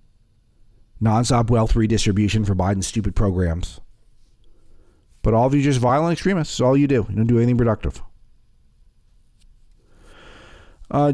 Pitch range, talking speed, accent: 90-120 Hz, 130 wpm, American